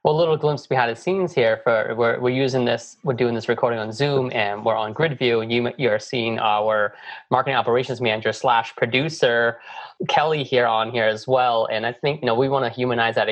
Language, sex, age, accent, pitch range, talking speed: English, male, 20-39, American, 110-125 Hz, 225 wpm